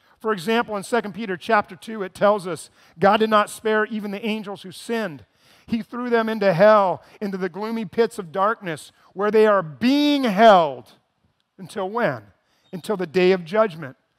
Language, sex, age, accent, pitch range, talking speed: English, male, 40-59, American, 185-240 Hz, 180 wpm